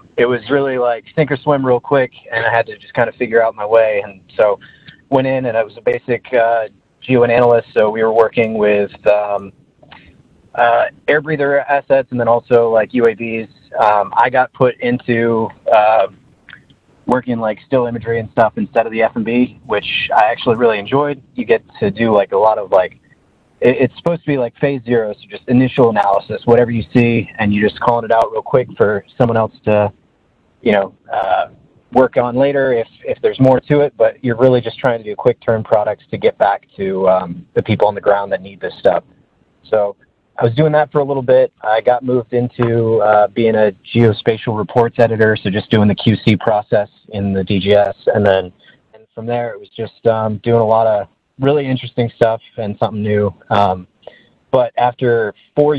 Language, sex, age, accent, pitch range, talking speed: English, male, 20-39, American, 110-130 Hz, 205 wpm